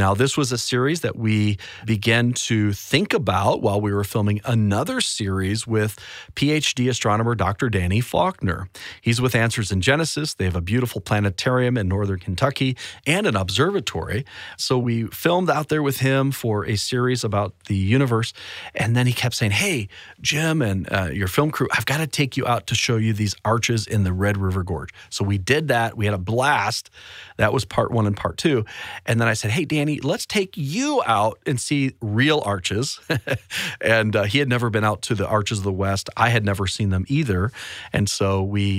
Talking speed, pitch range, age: 205 wpm, 100-125 Hz, 40-59